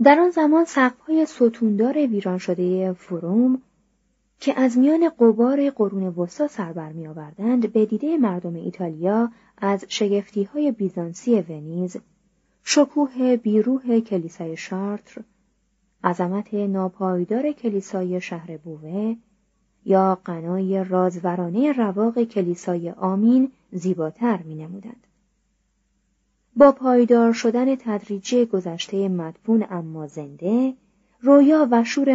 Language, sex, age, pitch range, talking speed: Persian, female, 30-49, 180-240 Hz, 100 wpm